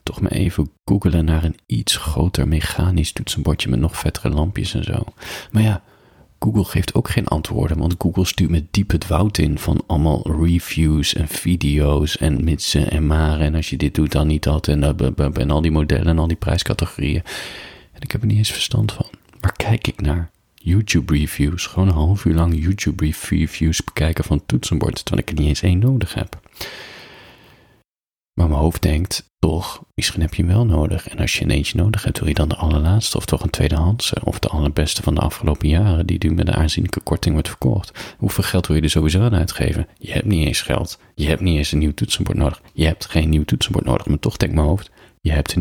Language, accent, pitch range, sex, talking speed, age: Dutch, Dutch, 75-95 Hz, male, 220 wpm, 40-59